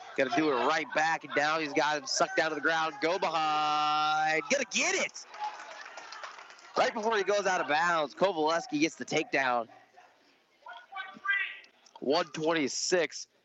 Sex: male